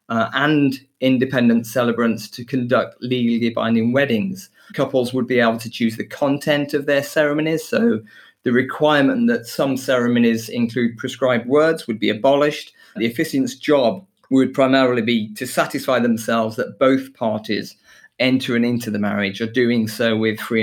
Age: 30-49